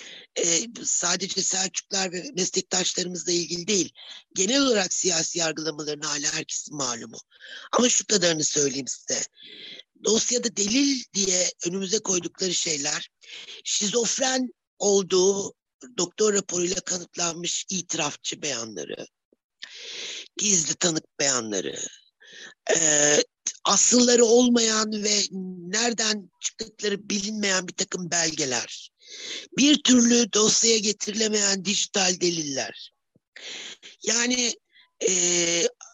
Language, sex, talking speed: Turkish, male, 85 wpm